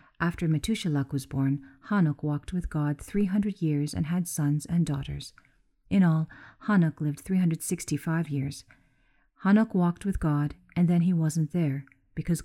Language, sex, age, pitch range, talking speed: English, female, 50-69, 145-180 Hz, 150 wpm